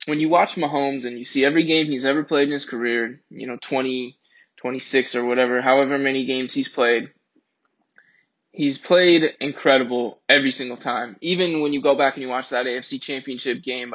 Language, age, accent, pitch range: English, 20-39, American, 125-160 Hz